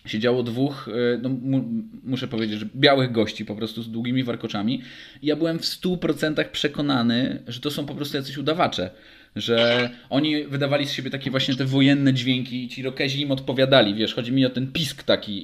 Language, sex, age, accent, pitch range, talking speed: Polish, male, 20-39, native, 120-150 Hz, 195 wpm